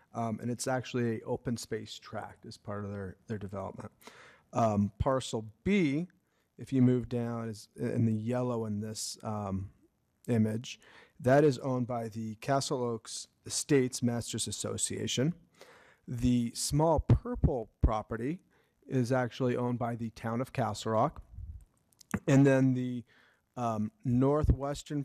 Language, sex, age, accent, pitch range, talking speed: English, male, 40-59, American, 110-130 Hz, 135 wpm